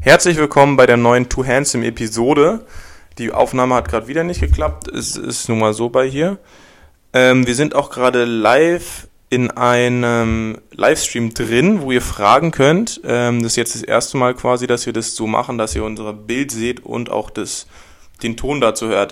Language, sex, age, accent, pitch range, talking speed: German, male, 20-39, German, 115-135 Hz, 190 wpm